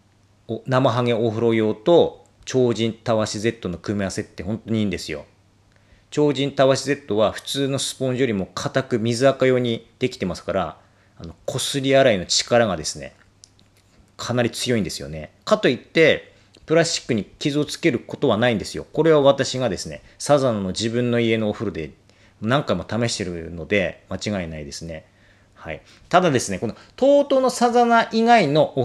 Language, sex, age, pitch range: Japanese, male, 40-59, 95-135 Hz